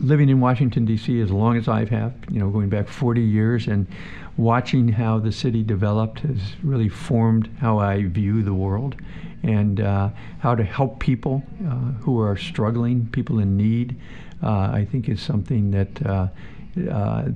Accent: American